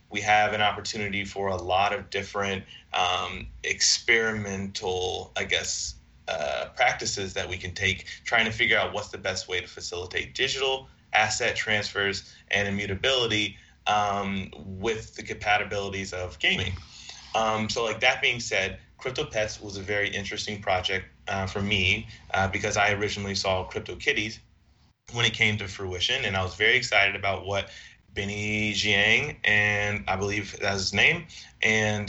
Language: English